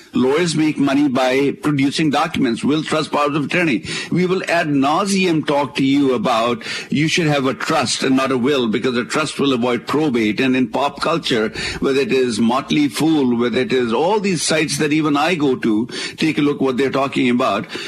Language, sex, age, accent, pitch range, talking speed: English, male, 60-79, Indian, 130-160 Hz, 205 wpm